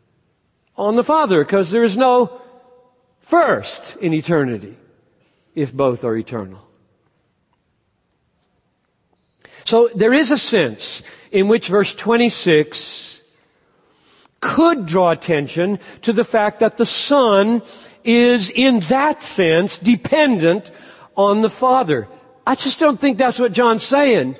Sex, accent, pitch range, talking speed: male, American, 165-250 Hz, 120 wpm